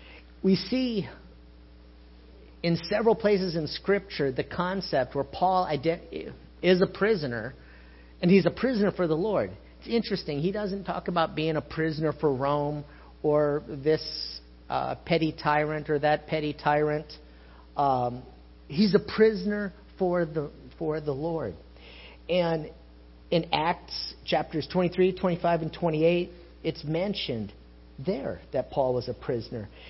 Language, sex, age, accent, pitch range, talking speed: English, male, 50-69, American, 120-180 Hz, 130 wpm